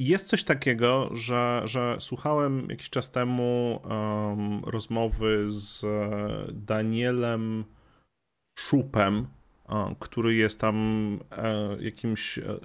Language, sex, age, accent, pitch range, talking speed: Polish, male, 30-49, native, 110-125 Hz, 80 wpm